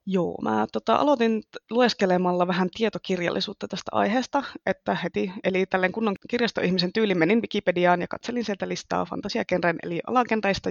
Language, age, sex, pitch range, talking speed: Finnish, 20-39, female, 175-210 Hz, 135 wpm